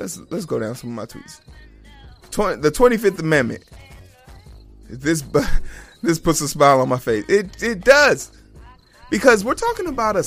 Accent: American